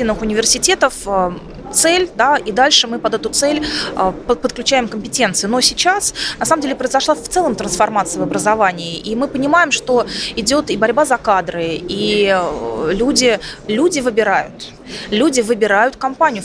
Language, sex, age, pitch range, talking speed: Russian, female, 20-39, 205-260 Hz, 140 wpm